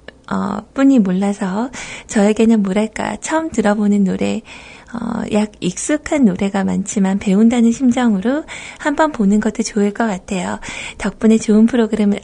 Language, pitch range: Korean, 200-275 Hz